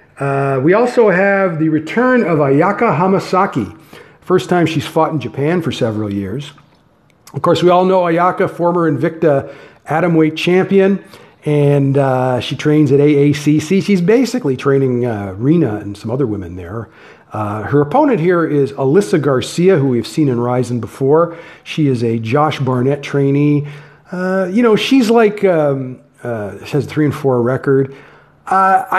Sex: male